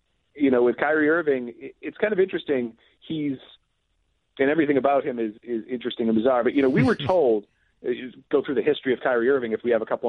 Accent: American